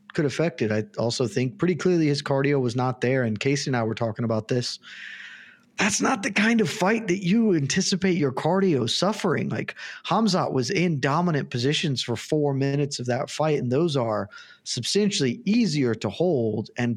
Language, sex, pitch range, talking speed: English, male, 120-165 Hz, 185 wpm